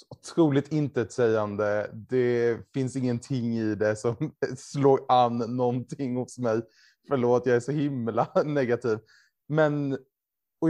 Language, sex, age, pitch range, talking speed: Swedish, male, 20-39, 115-155 Hz, 130 wpm